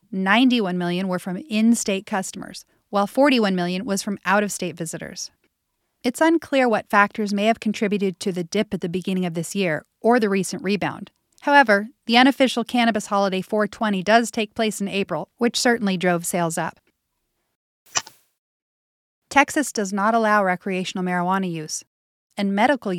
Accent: American